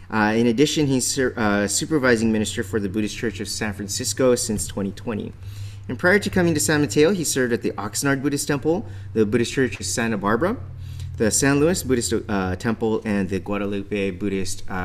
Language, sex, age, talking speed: English, male, 30-49, 190 wpm